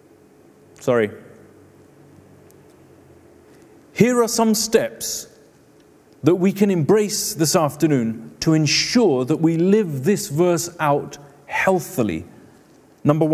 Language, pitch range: English, 150-195 Hz